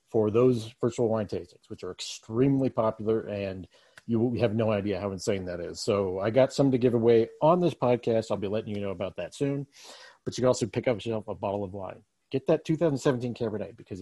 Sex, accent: male, American